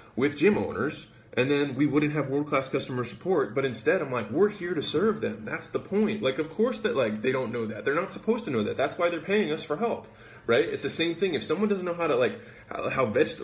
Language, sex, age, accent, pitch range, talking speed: English, male, 20-39, American, 115-160 Hz, 265 wpm